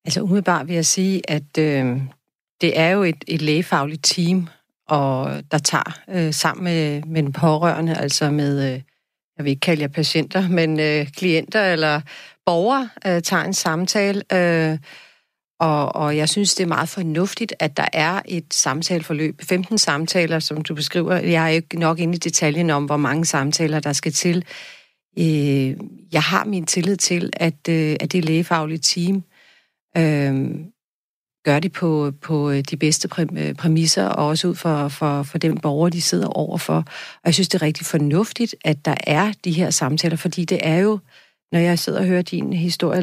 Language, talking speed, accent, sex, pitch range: Danish, 175 wpm, native, female, 155-185 Hz